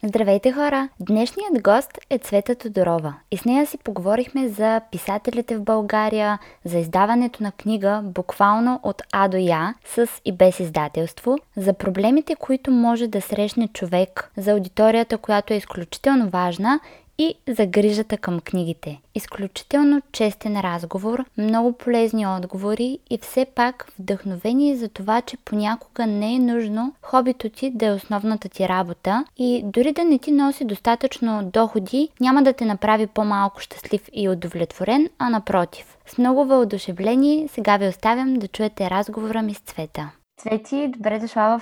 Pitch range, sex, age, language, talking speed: 200-235 Hz, female, 20-39, Bulgarian, 150 wpm